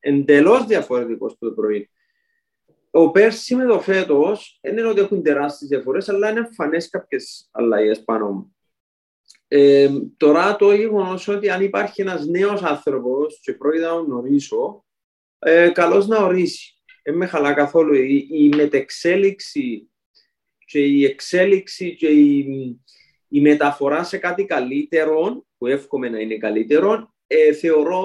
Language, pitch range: Greek, 140-200 Hz